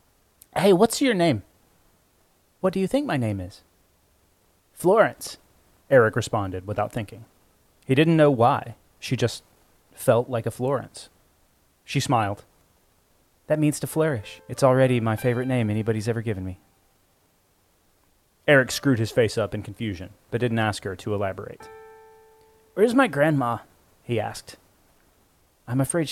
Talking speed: 140 wpm